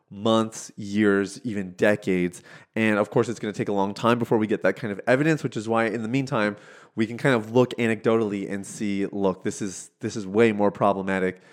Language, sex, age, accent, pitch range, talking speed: English, male, 30-49, American, 100-120 Hz, 225 wpm